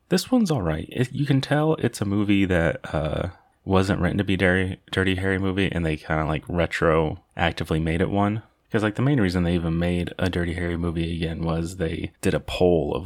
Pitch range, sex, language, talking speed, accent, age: 85-100 Hz, male, English, 230 wpm, American, 20-39